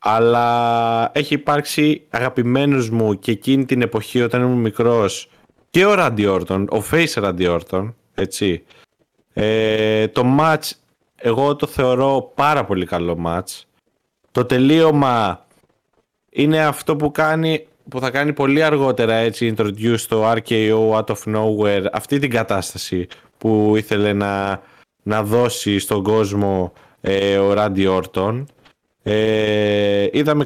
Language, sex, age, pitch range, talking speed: Greek, male, 20-39, 105-135 Hz, 120 wpm